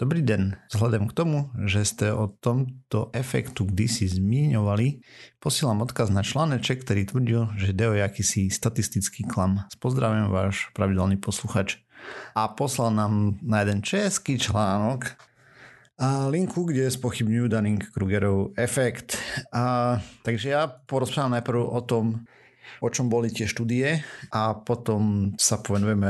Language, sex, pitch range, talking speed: Slovak, male, 100-125 Hz, 135 wpm